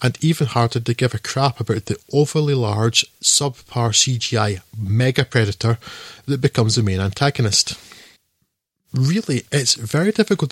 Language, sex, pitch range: English, male, 115-150 Hz